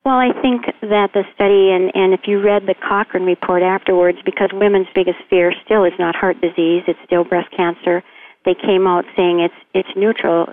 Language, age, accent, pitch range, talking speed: English, 50-69, American, 175-195 Hz, 200 wpm